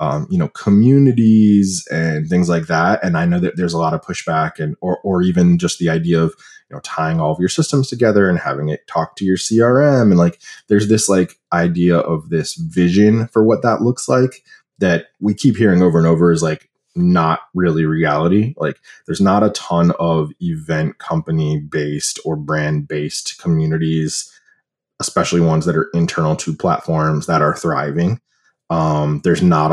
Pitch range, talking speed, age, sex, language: 80-95 Hz, 185 wpm, 20-39, male, English